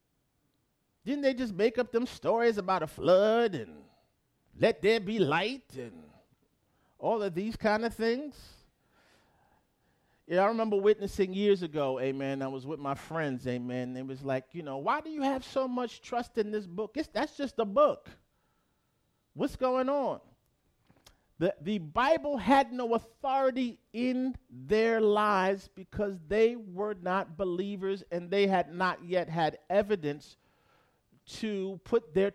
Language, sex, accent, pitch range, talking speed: English, male, American, 140-225 Hz, 150 wpm